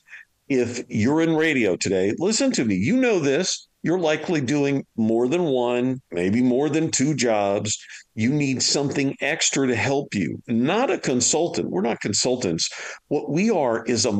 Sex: male